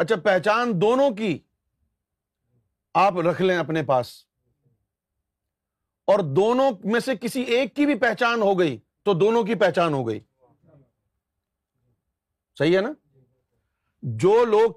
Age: 40-59